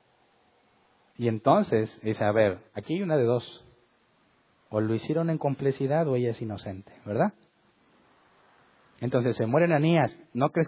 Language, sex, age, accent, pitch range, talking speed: Spanish, male, 40-59, Mexican, 115-160 Hz, 145 wpm